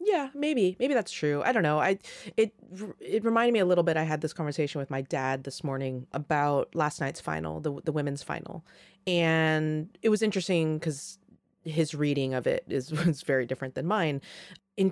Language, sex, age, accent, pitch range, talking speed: English, female, 30-49, American, 140-190 Hz, 195 wpm